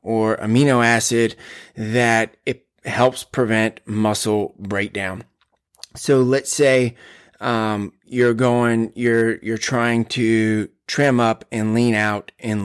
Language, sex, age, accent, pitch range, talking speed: English, male, 20-39, American, 110-125 Hz, 120 wpm